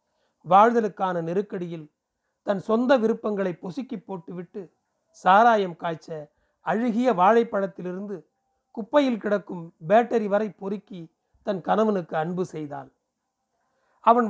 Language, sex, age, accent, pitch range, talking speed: Tamil, male, 40-59, native, 180-235 Hz, 90 wpm